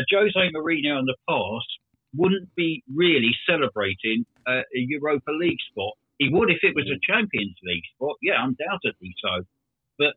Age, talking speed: 50-69, 155 wpm